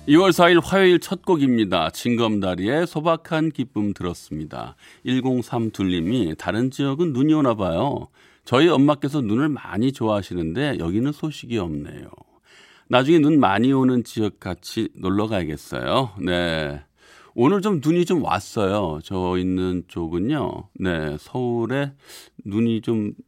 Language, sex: Korean, male